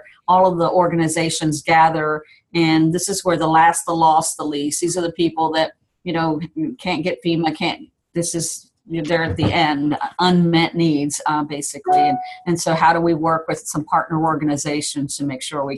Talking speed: 195 wpm